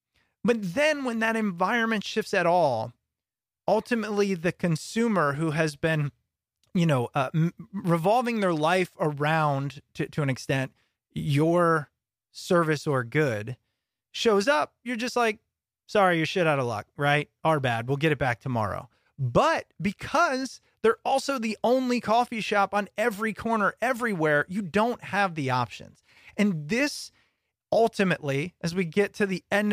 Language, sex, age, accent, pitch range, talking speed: English, male, 30-49, American, 140-205 Hz, 150 wpm